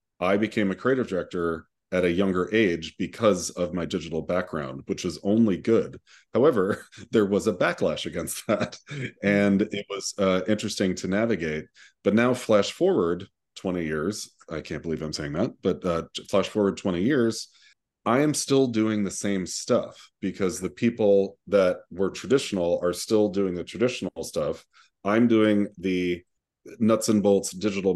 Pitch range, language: 90-105 Hz, English